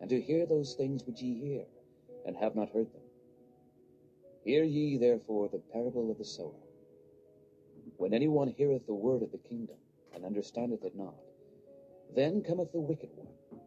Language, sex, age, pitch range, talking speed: English, male, 40-59, 110-145 Hz, 170 wpm